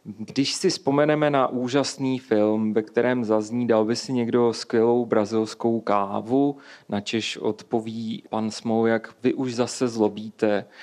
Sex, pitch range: male, 115-135 Hz